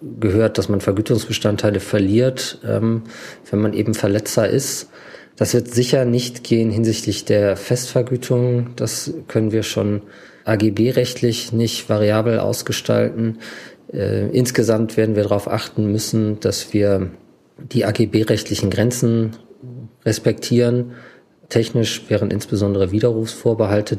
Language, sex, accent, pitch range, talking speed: German, male, German, 100-115 Hz, 105 wpm